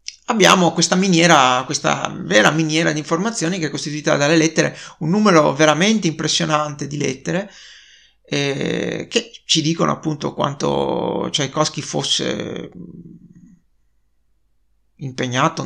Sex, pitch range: male, 150-180 Hz